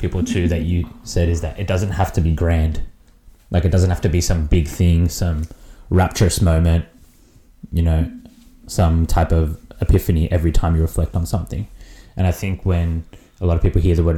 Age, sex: 20-39, male